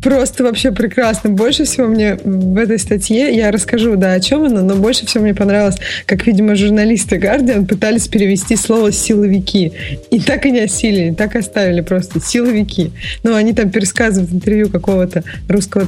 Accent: native